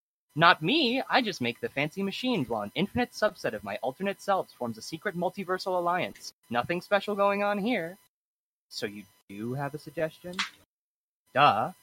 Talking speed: 165 wpm